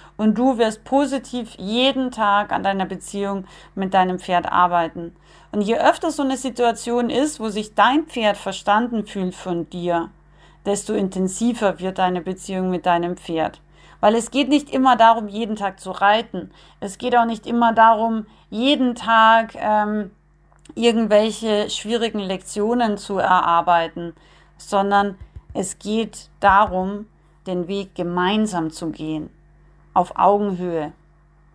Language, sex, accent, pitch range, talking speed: German, female, German, 180-220 Hz, 135 wpm